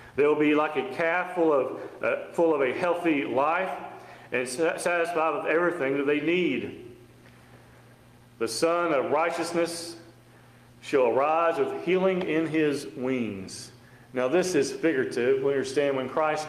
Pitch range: 130-170 Hz